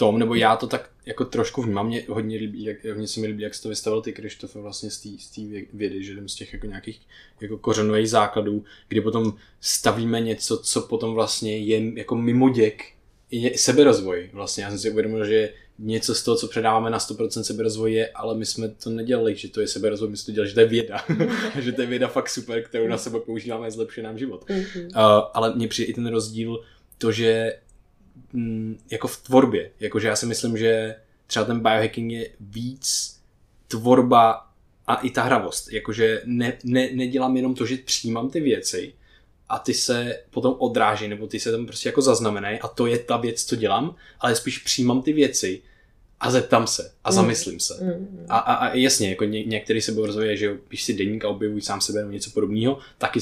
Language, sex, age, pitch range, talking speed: Czech, male, 20-39, 110-120 Hz, 200 wpm